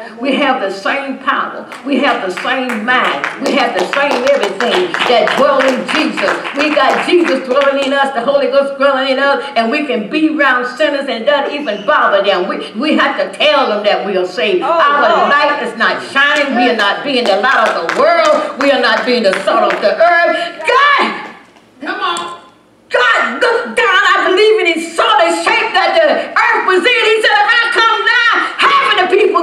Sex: female